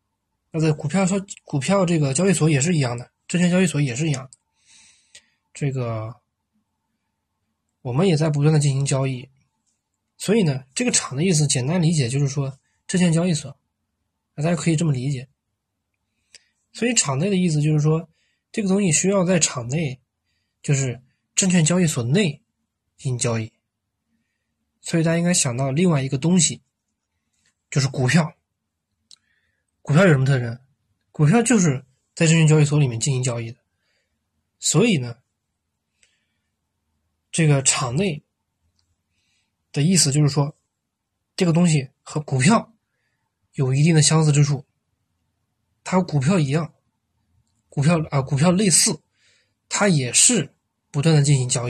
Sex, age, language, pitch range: male, 20-39, Chinese, 110-160 Hz